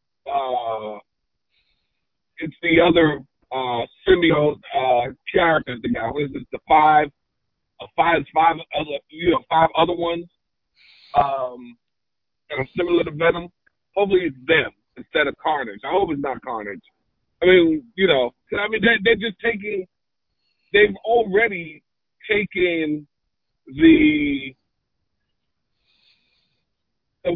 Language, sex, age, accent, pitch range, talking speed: English, male, 50-69, American, 155-195 Hz, 125 wpm